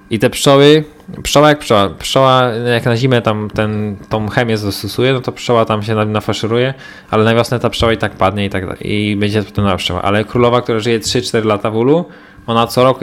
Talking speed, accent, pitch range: 225 wpm, native, 100-120 Hz